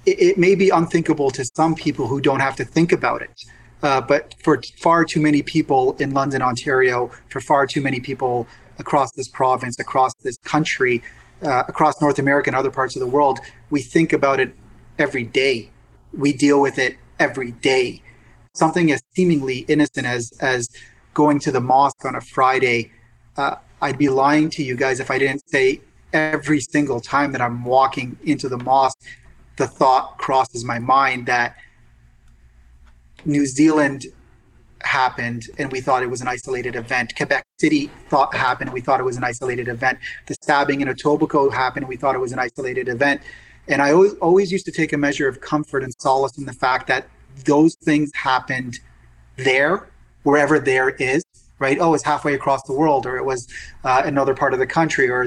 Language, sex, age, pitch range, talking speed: English, male, 30-49, 130-150 Hz, 190 wpm